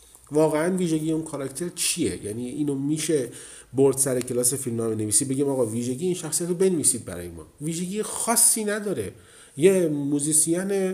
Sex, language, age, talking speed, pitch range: male, Persian, 40-59, 150 wpm, 110-155 Hz